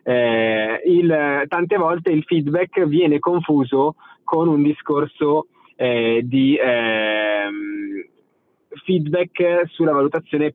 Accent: native